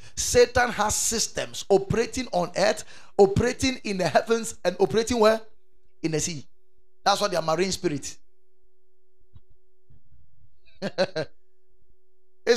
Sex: male